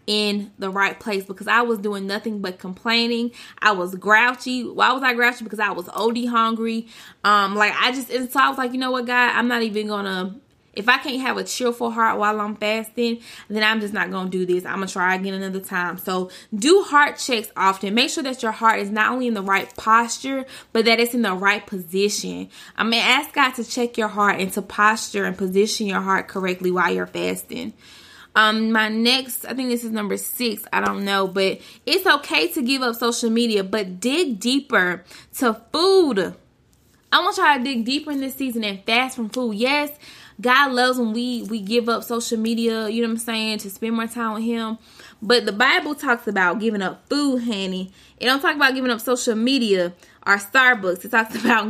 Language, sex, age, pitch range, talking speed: English, female, 20-39, 200-245 Hz, 220 wpm